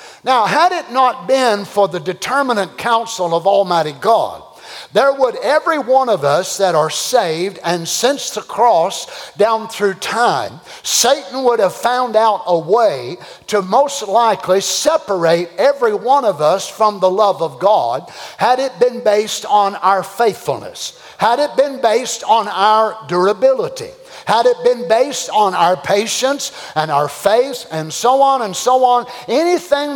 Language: English